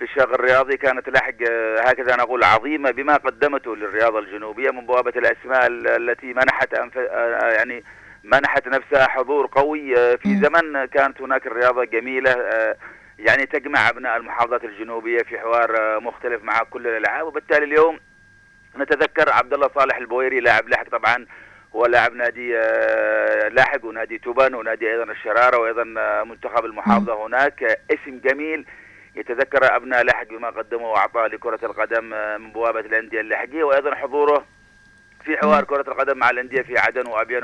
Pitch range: 115-130 Hz